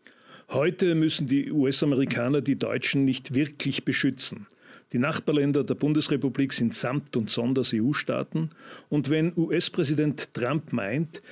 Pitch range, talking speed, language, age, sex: 125-155 Hz, 120 wpm, German, 40-59, male